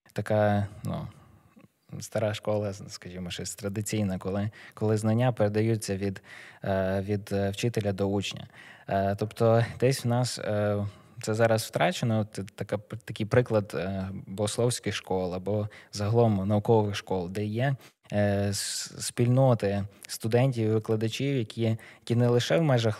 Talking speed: 115 wpm